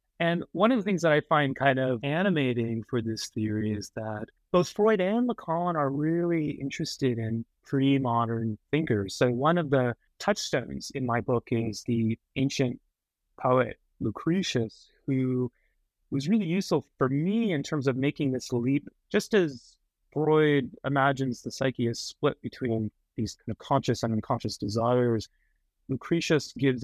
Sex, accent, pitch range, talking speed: male, American, 115-145 Hz, 155 wpm